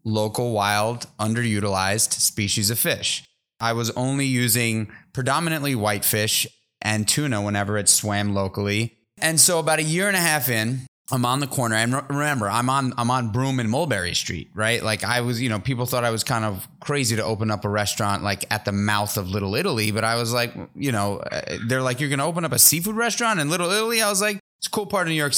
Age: 30-49